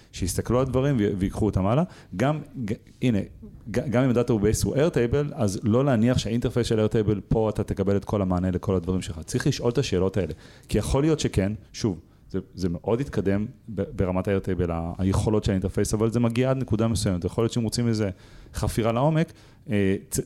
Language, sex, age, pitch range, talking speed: Hebrew, male, 30-49, 95-115 Hz, 190 wpm